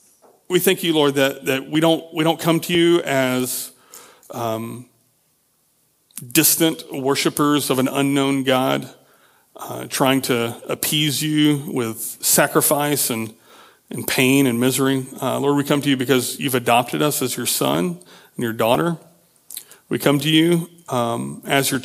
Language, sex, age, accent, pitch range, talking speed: English, male, 40-59, American, 125-145 Hz, 155 wpm